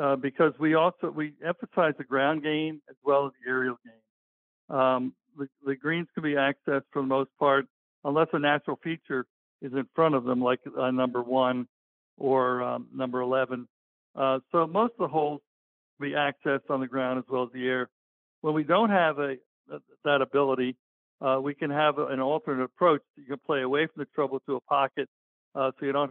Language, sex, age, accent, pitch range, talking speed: English, male, 60-79, American, 125-145 Hz, 210 wpm